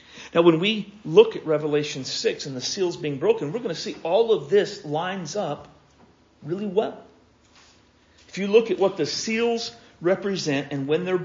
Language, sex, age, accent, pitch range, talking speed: English, male, 50-69, American, 140-180 Hz, 180 wpm